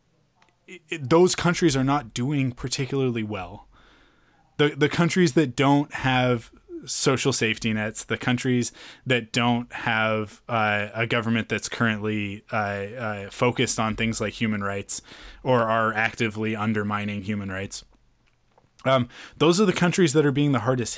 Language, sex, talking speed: English, male, 145 wpm